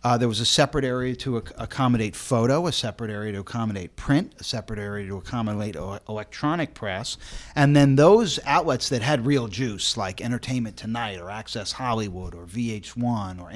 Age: 40-59